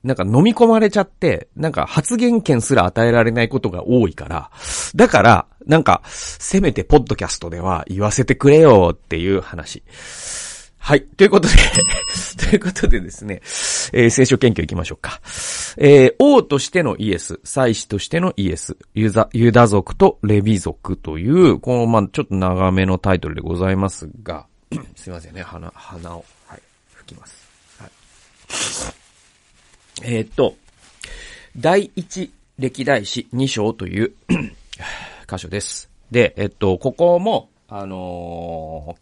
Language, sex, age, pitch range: Japanese, male, 40-59, 95-150 Hz